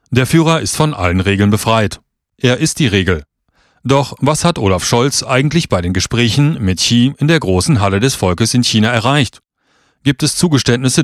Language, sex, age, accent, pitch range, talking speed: German, male, 40-59, German, 100-145 Hz, 185 wpm